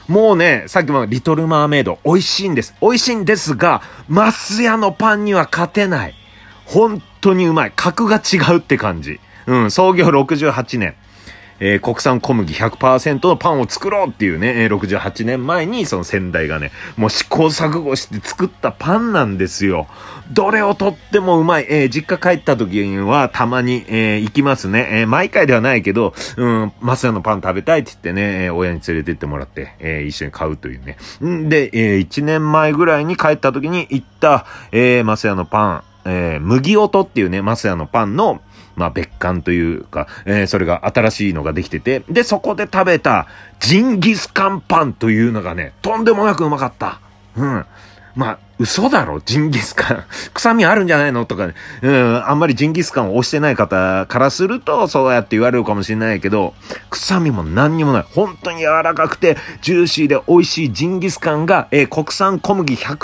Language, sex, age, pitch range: Japanese, male, 40-59, 105-170 Hz